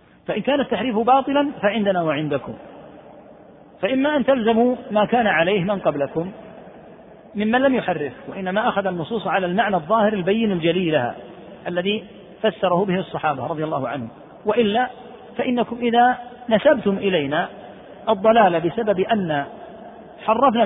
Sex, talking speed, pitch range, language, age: male, 120 wpm, 155-215 Hz, Arabic, 40-59